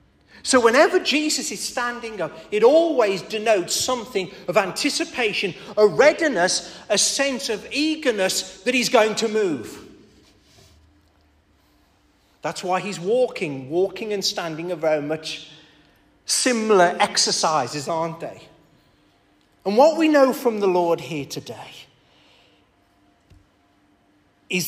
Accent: British